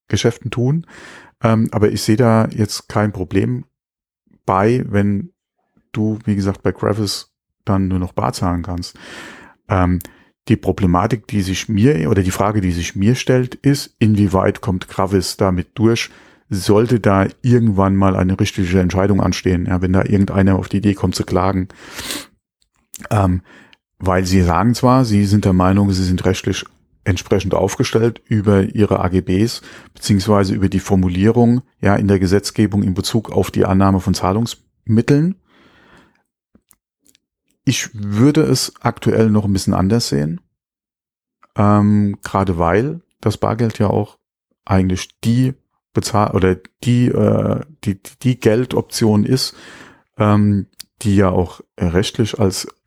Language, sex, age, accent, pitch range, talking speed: German, male, 40-59, German, 95-115 Hz, 135 wpm